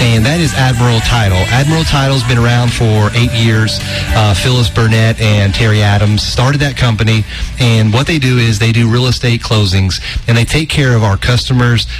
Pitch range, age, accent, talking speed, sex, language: 105-125 Hz, 30-49, American, 190 wpm, male, English